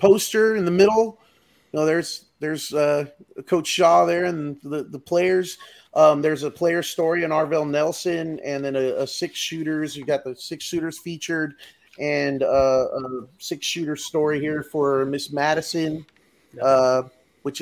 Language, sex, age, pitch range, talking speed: English, male, 30-49, 150-180 Hz, 165 wpm